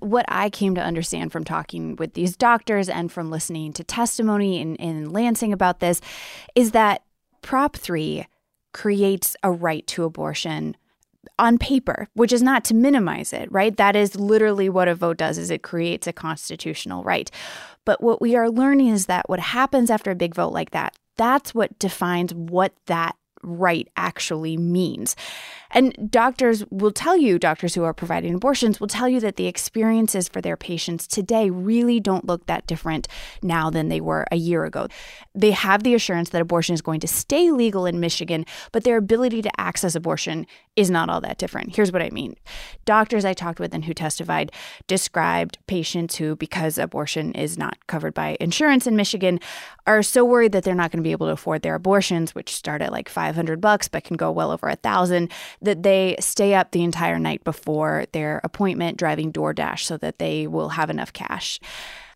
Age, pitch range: 20-39, 165-225 Hz